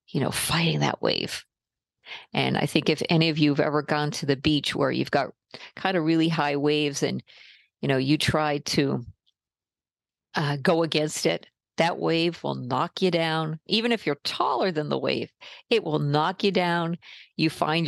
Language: English